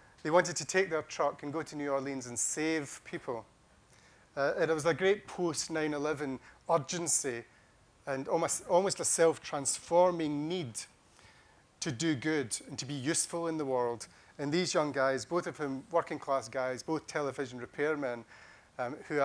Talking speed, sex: 165 wpm, male